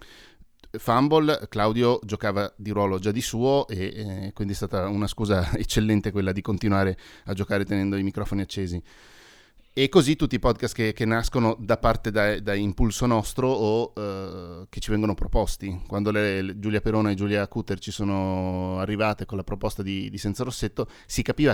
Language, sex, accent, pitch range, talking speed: Italian, male, native, 100-115 Hz, 180 wpm